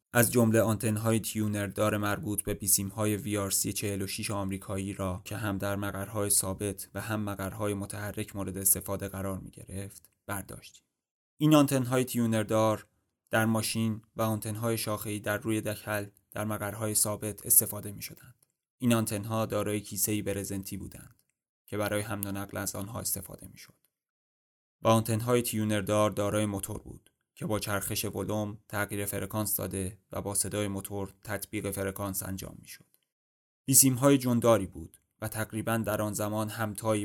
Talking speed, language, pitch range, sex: 150 wpm, Persian, 100-110 Hz, male